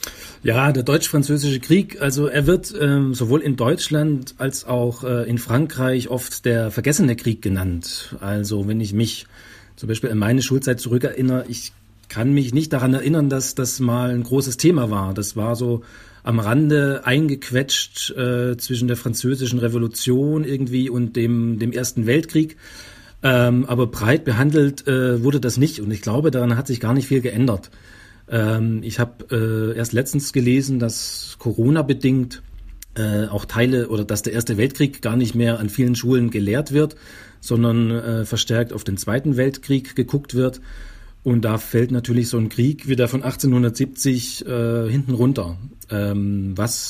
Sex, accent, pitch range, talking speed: male, German, 115-135 Hz, 165 wpm